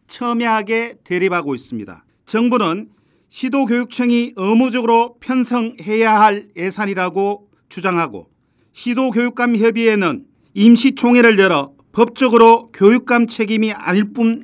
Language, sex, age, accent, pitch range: Korean, male, 40-59, native, 205-245 Hz